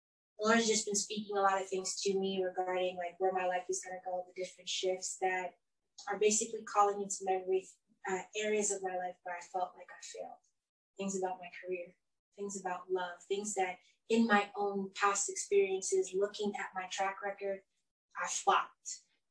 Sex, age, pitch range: female, 20-39, 185-205 Hz